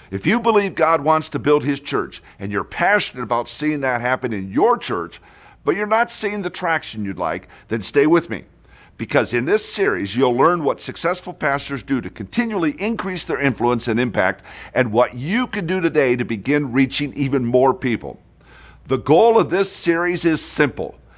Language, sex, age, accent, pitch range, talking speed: English, male, 50-69, American, 120-170 Hz, 190 wpm